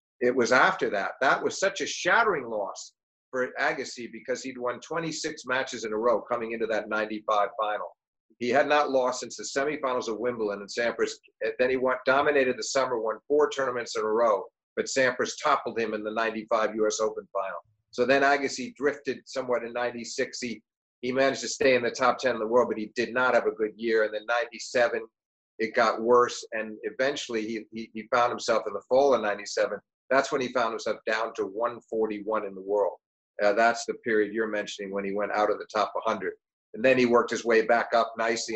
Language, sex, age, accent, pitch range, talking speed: English, male, 50-69, American, 110-135 Hz, 210 wpm